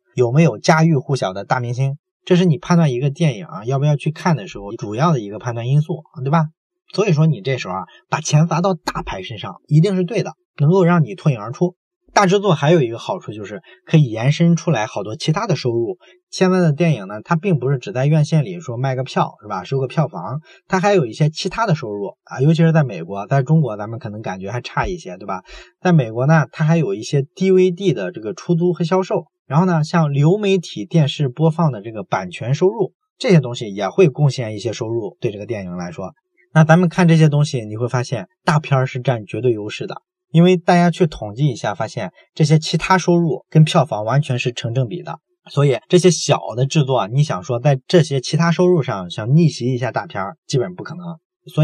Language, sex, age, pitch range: Chinese, male, 20-39, 130-180 Hz